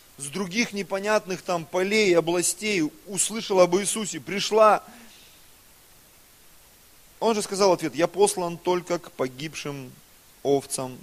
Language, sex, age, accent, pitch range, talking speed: Russian, male, 30-49, native, 135-200 Hz, 120 wpm